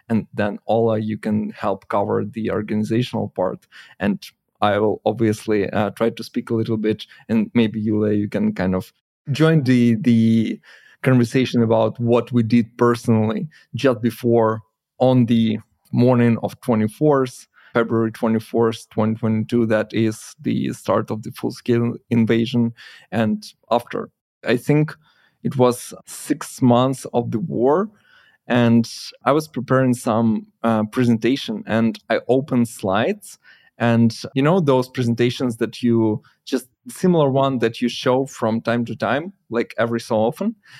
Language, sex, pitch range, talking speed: Ukrainian, male, 110-125 Hz, 145 wpm